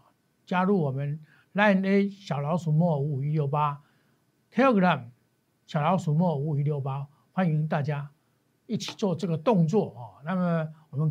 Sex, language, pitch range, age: male, Chinese, 150-215 Hz, 60-79